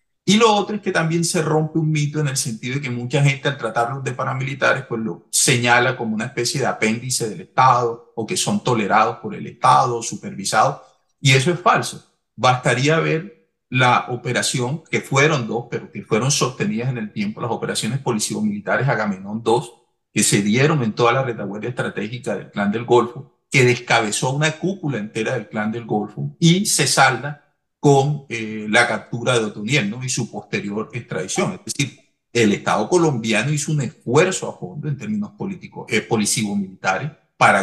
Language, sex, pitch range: Spanish, male, 115-155 Hz